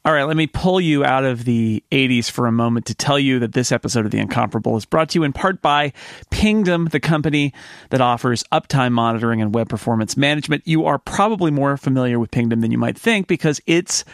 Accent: American